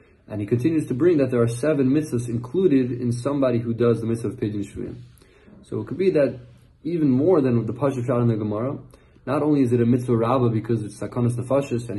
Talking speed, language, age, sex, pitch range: 225 wpm, English, 20-39, male, 110-135 Hz